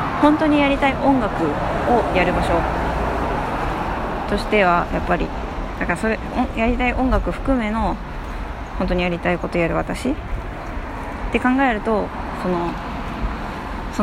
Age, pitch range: 20-39, 165-220 Hz